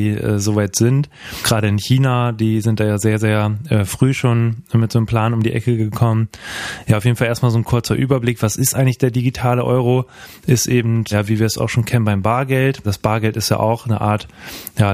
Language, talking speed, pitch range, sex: German, 230 wpm, 110-120 Hz, male